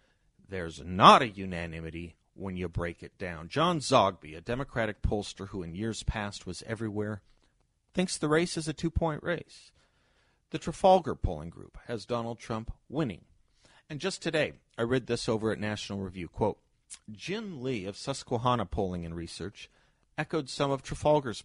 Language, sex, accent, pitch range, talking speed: English, male, American, 95-140 Hz, 160 wpm